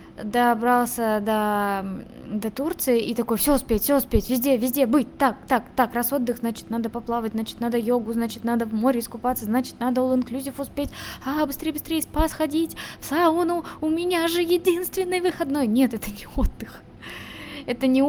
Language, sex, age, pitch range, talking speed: Russian, female, 20-39, 220-270 Hz, 170 wpm